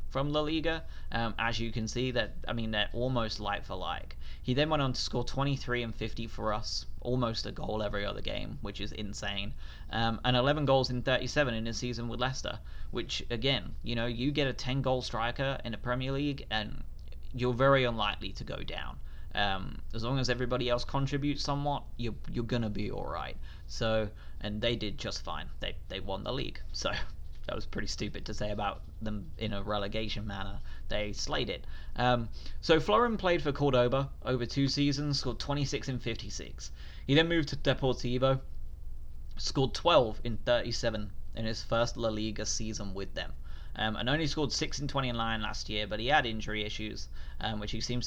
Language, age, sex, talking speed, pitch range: English, 30-49, male, 200 wpm, 105-130 Hz